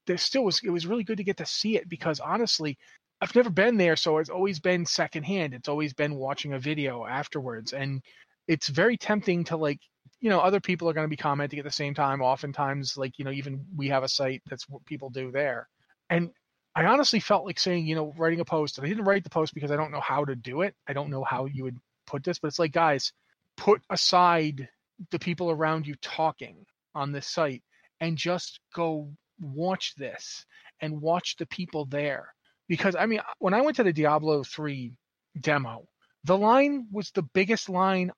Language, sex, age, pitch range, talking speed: English, male, 30-49, 145-195 Hz, 215 wpm